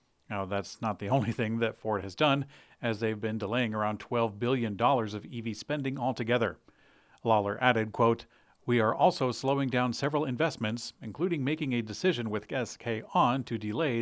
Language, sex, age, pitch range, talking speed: English, male, 40-59, 105-130 Hz, 170 wpm